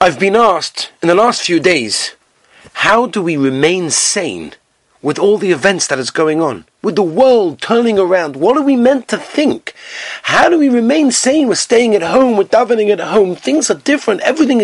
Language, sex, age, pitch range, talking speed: English, male, 40-59, 165-225 Hz, 200 wpm